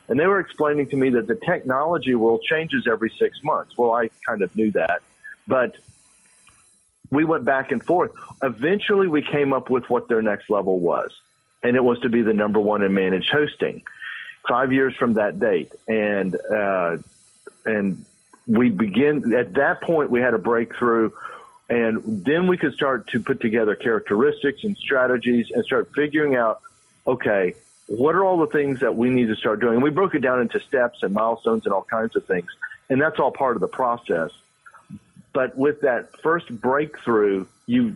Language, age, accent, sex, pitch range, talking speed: English, 50-69, American, male, 115-150 Hz, 185 wpm